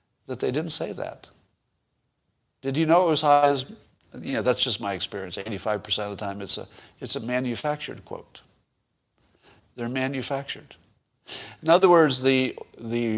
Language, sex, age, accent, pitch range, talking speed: English, male, 50-69, American, 110-145 Hz, 160 wpm